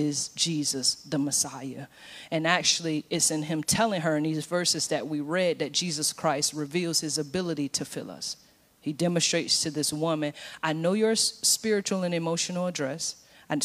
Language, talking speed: English, 170 wpm